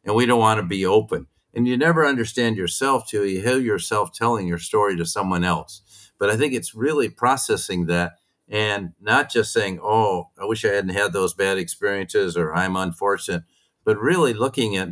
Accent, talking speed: American, 195 wpm